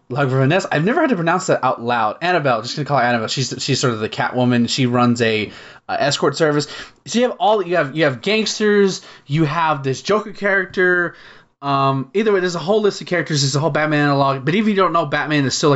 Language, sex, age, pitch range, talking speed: English, male, 20-39, 125-160 Hz, 250 wpm